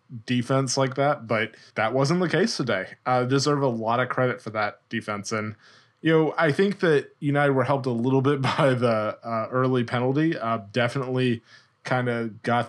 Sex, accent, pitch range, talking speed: male, American, 115-135 Hz, 190 wpm